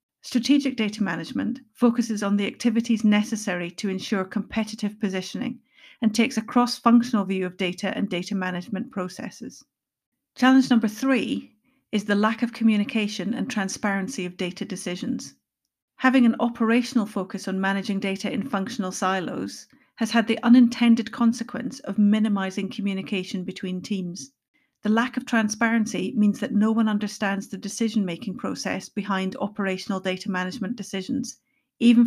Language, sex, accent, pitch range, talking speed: English, female, British, 195-235 Hz, 140 wpm